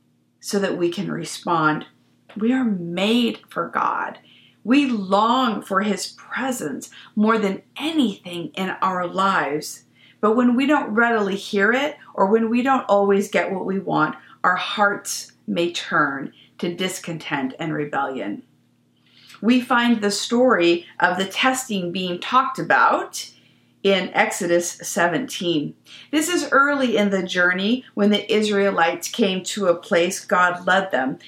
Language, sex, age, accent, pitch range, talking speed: English, female, 50-69, American, 175-240 Hz, 140 wpm